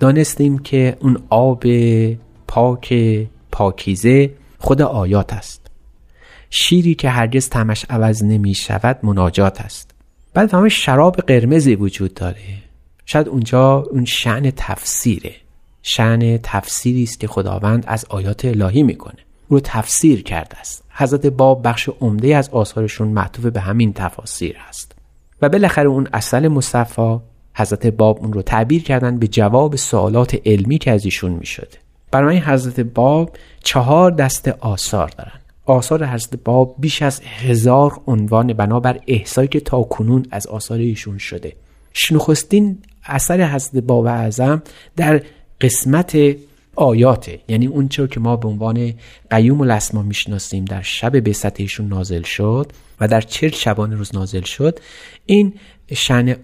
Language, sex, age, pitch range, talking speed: Persian, male, 40-59, 105-140 Hz, 135 wpm